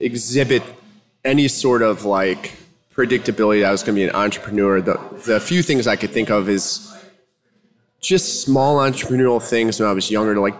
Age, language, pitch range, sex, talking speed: 20-39, English, 115-140 Hz, male, 180 wpm